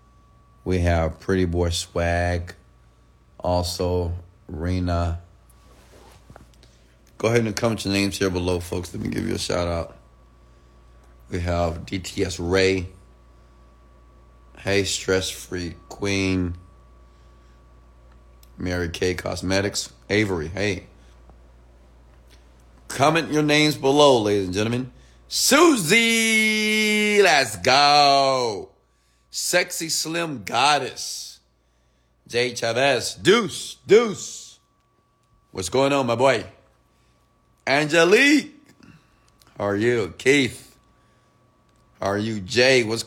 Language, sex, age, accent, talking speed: English, male, 30-49, American, 95 wpm